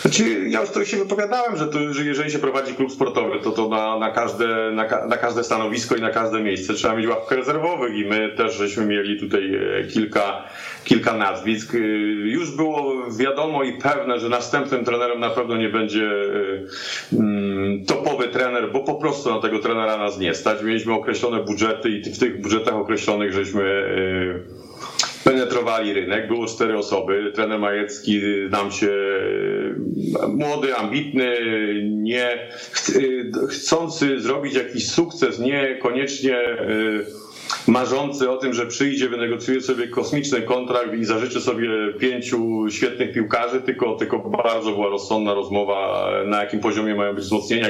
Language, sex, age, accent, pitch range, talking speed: Polish, male, 40-59, native, 105-135 Hz, 140 wpm